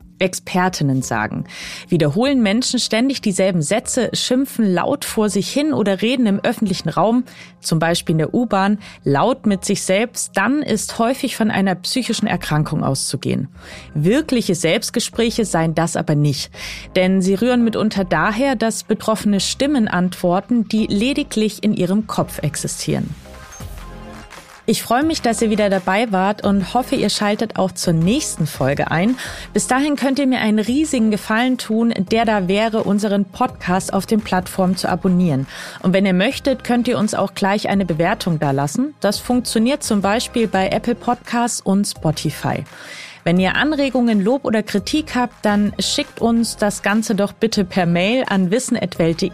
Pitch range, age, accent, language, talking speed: 185-240 Hz, 30-49, German, German, 160 wpm